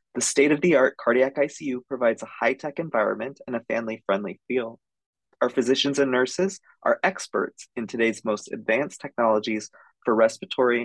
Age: 20-39